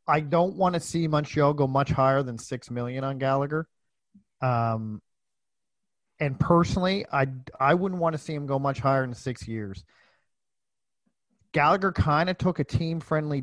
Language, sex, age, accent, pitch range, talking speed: English, male, 40-59, American, 120-145 Hz, 165 wpm